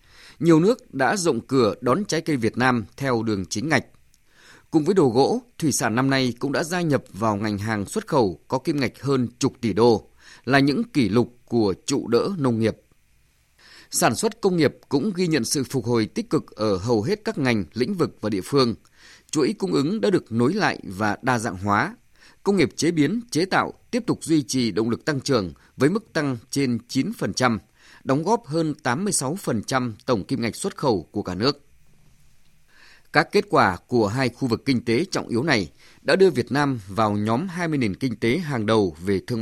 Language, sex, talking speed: Vietnamese, male, 210 wpm